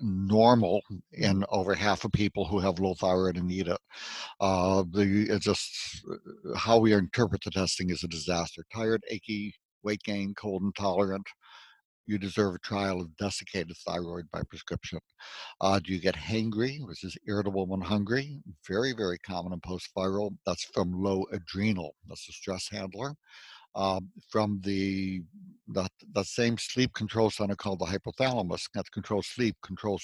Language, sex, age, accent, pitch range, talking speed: English, male, 60-79, American, 95-110 Hz, 155 wpm